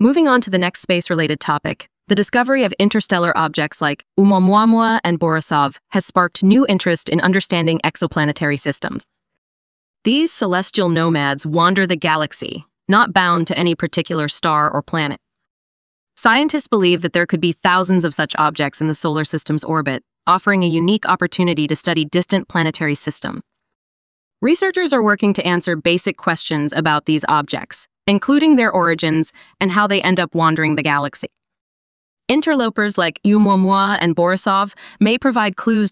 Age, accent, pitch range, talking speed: 20-39, American, 160-200 Hz, 150 wpm